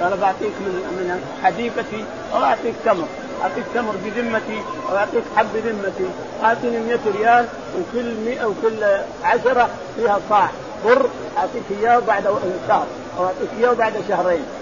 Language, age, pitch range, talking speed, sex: Arabic, 50-69, 210-245 Hz, 130 wpm, male